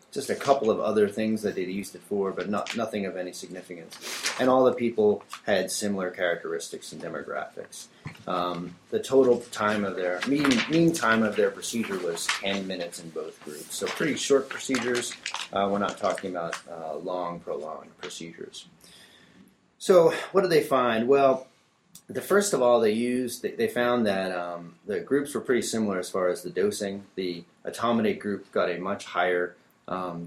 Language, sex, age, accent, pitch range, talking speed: English, male, 30-49, American, 90-130 Hz, 180 wpm